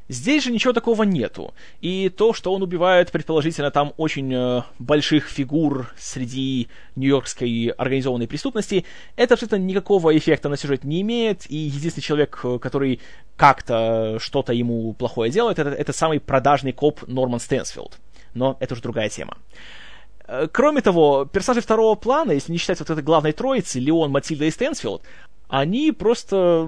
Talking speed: 150 wpm